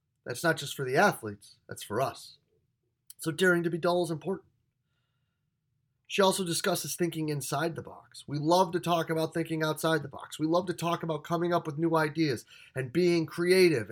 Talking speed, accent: 195 wpm, American